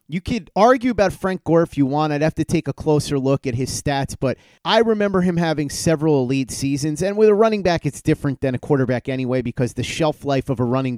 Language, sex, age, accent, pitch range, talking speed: English, male, 30-49, American, 125-160 Hz, 245 wpm